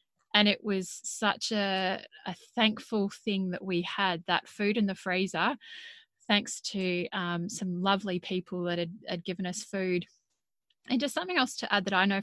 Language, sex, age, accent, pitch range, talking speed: English, female, 20-39, Australian, 180-210 Hz, 180 wpm